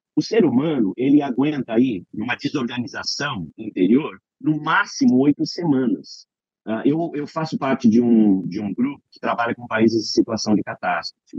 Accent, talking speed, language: Brazilian, 155 wpm, Portuguese